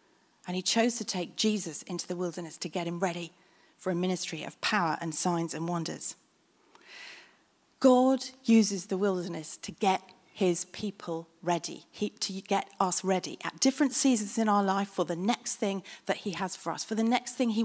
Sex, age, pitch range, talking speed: female, 40-59, 185-265 Hz, 185 wpm